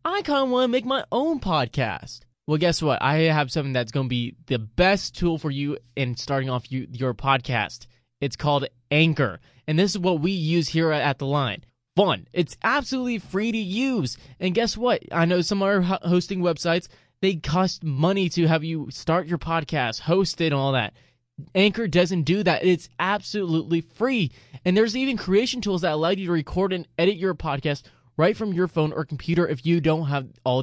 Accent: American